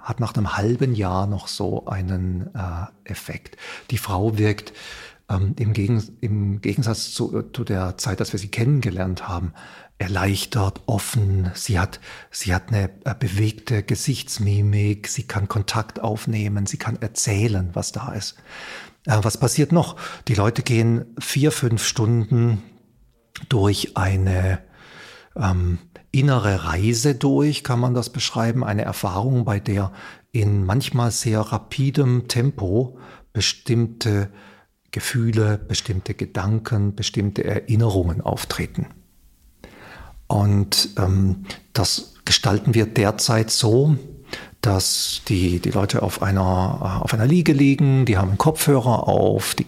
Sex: male